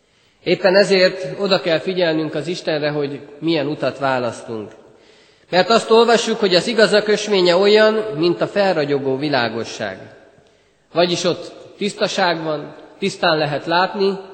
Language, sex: Hungarian, male